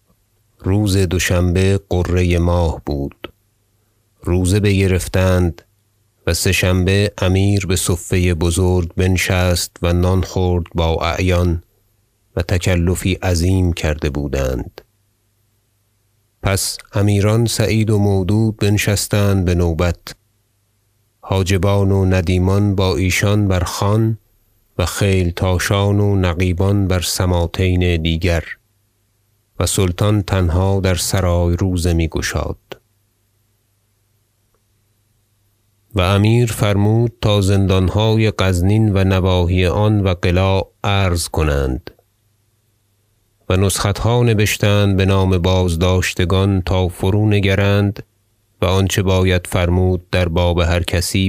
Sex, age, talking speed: male, 30-49, 100 wpm